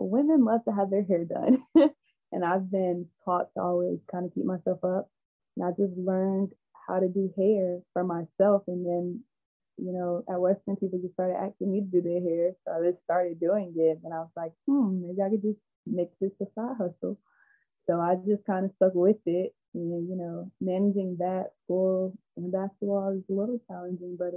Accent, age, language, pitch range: American, 20-39, English, 175-195 Hz